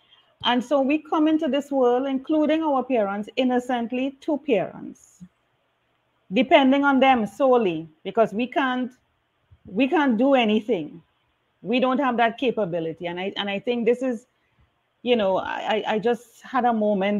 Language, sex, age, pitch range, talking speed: English, female, 40-59, 195-250 Hz, 155 wpm